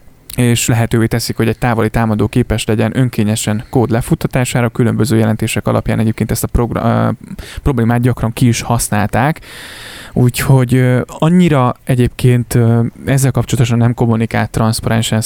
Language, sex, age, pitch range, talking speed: Hungarian, male, 20-39, 110-125 Hz, 120 wpm